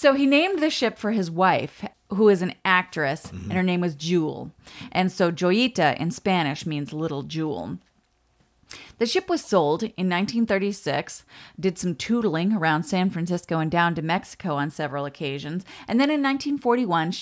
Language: English